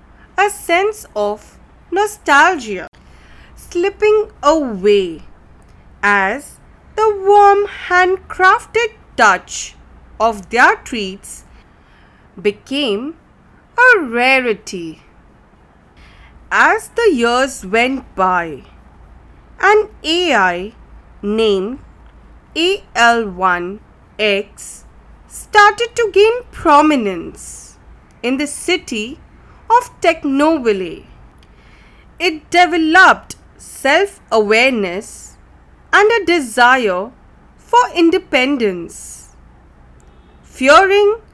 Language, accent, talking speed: English, Indian, 60 wpm